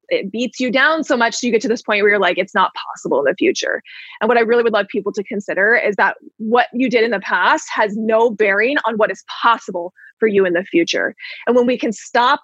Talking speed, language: 265 wpm, English